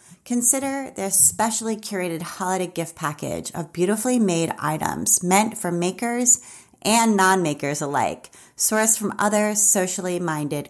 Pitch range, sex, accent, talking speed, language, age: 170-210 Hz, female, American, 120 wpm, English, 30-49